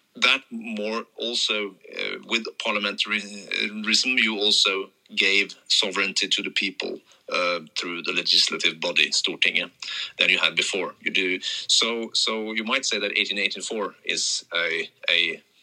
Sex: male